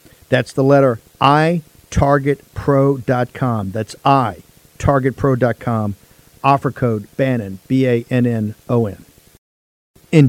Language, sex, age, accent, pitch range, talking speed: English, male, 50-69, American, 120-150 Hz, 105 wpm